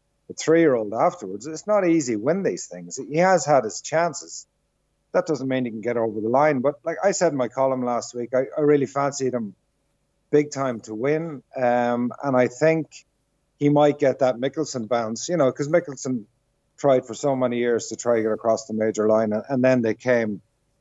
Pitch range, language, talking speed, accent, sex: 115-140 Hz, English, 210 wpm, Irish, male